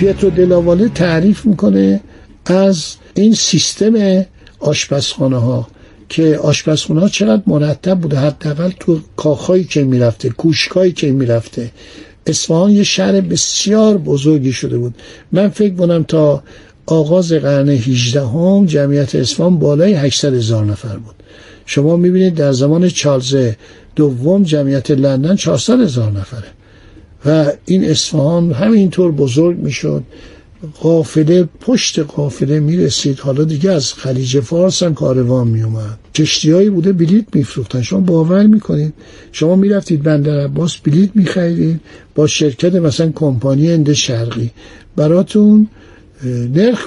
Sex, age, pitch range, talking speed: male, 60-79, 130-180 Hz, 125 wpm